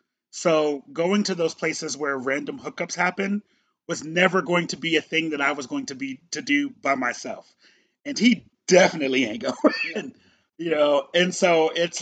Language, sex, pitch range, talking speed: English, male, 140-190 Hz, 180 wpm